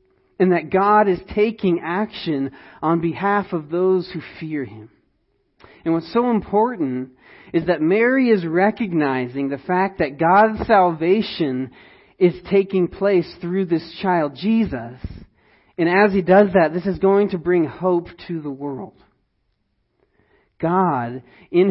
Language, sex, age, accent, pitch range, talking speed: English, male, 40-59, American, 145-185 Hz, 140 wpm